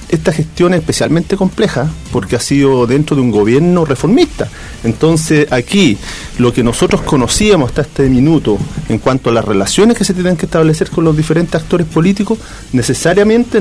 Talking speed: 170 wpm